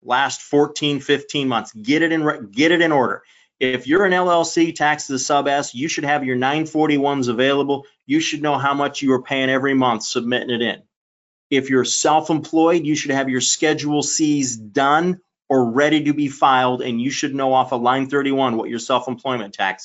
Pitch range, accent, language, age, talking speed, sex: 130-160 Hz, American, English, 30-49, 205 wpm, male